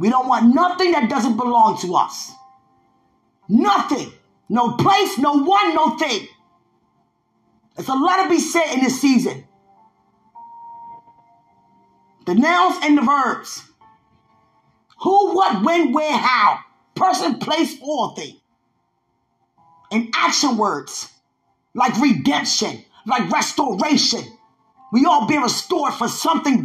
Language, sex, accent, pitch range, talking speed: English, male, American, 200-315 Hz, 115 wpm